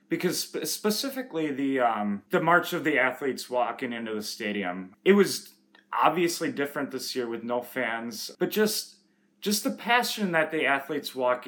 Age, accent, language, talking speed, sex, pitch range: 30-49, American, English, 160 wpm, male, 125-180 Hz